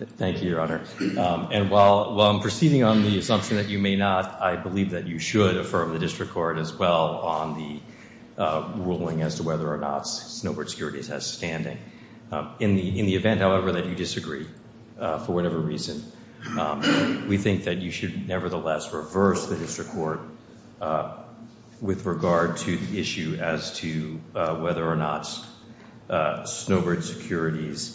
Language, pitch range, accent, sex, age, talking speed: English, 85-115 Hz, American, male, 50-69, 175 wpm